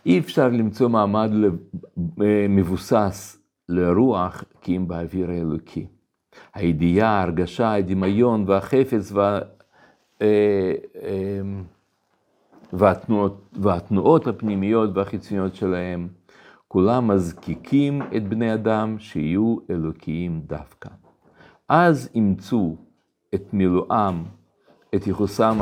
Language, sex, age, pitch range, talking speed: Hebrew, male, 50-69, 90-120 Hz, 80 wpm